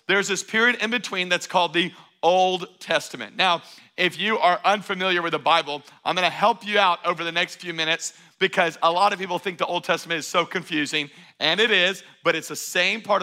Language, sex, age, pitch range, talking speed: English, male, 40-59, 165-210 Hz, 220 wpm